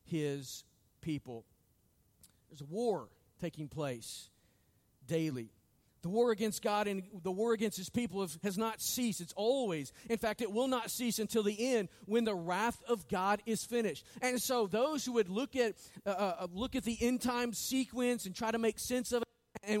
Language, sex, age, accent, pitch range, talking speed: English, male, 40-59, American, 180-235 Hz, 185 wpm